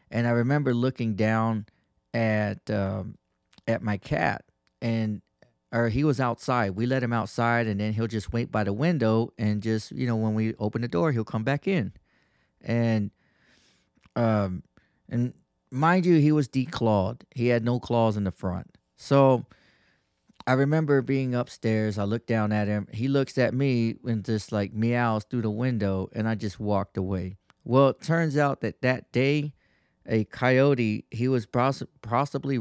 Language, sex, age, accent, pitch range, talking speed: English, male, 30-49, American, 105-125 Hz, 175 wpm